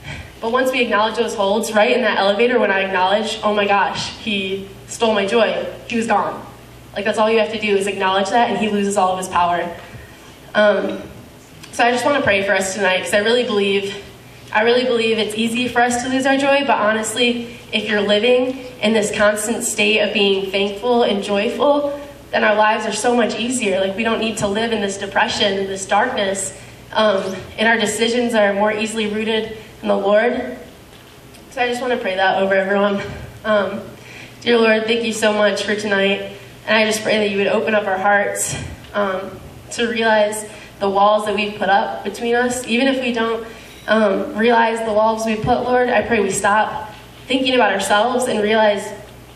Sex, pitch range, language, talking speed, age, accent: female, 200-225 Hz, English, 205 wpm, 20-39, American